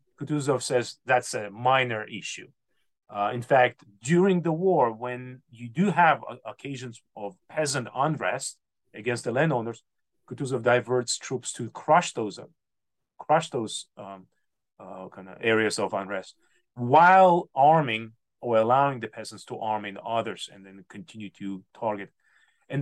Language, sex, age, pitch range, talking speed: English, male, 30-49, 110-145 Hz, 145 wpm